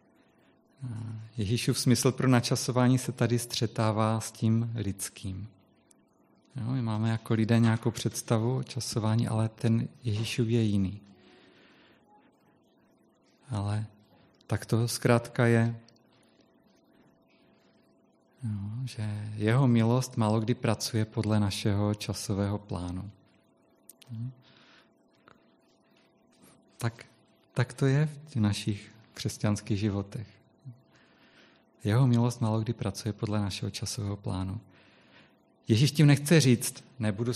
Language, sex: Czech, male